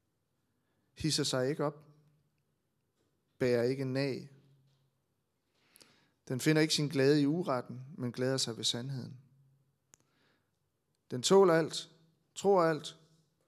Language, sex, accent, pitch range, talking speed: Danish, male, native, 130-150 Hz, 100 wpm